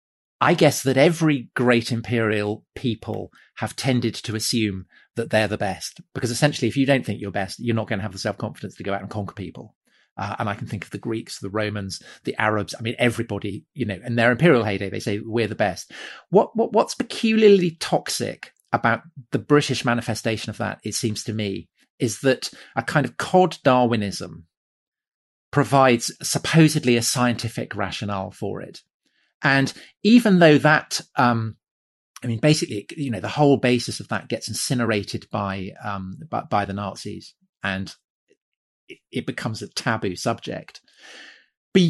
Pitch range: 105-135 Hz